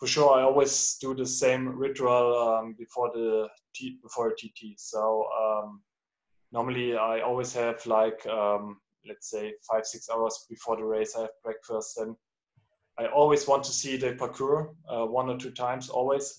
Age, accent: 20-39, German